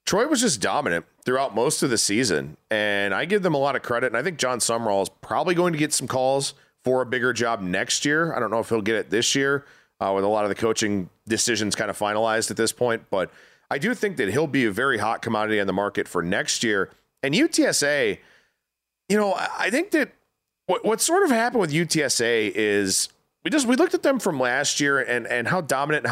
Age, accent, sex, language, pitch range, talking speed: 40-59, American, male, English, 115-160 Hz, 240 wpm